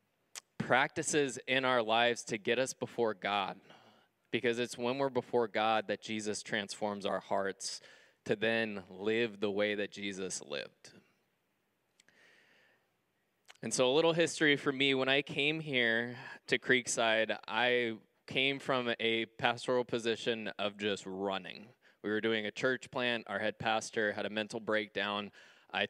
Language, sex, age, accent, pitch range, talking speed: English, male, 20-39, American, 105-125 Hz, 150 wpm